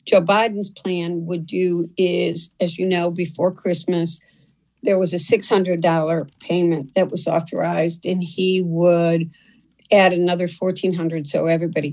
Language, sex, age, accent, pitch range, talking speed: English, female, 60-79, American, 170-200 Hz, 150 wpm